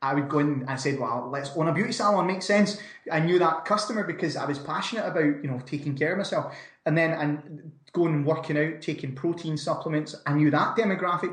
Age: 20-39